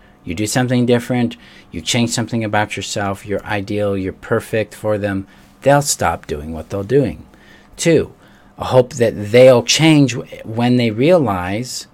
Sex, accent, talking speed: male, American, 145 wpm